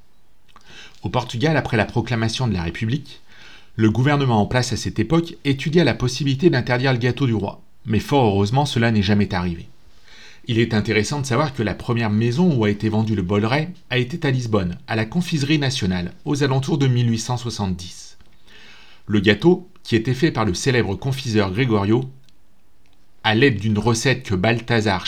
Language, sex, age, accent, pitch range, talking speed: French, male, 40-59, French, 110-140 Hz, 175 wpm